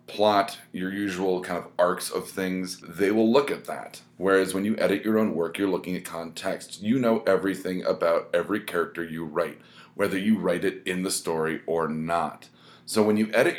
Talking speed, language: 200 wpm, English